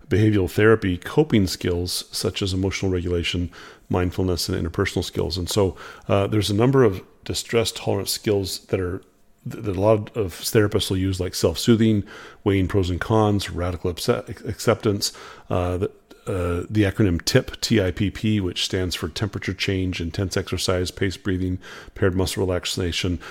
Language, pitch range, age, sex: English, 90-105 Hz, 40-59, male